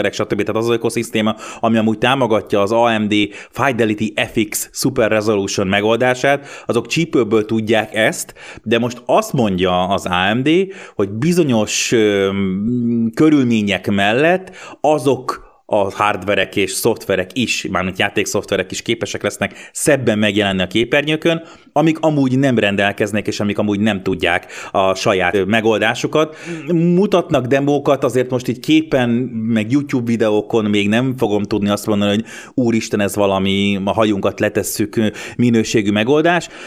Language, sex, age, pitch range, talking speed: Hungarian, male, 30-49, 105-125 Hz, 130 wpm